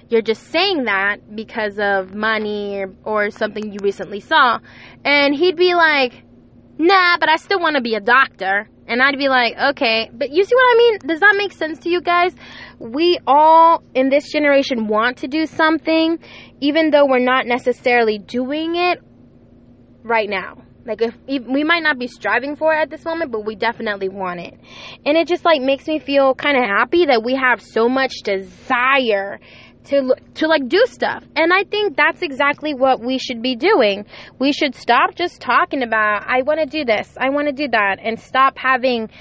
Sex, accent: female, American